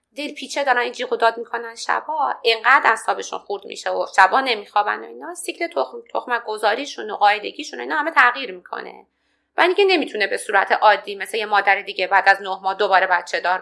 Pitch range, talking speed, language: 210-300 Hz, 190 wpm, Persian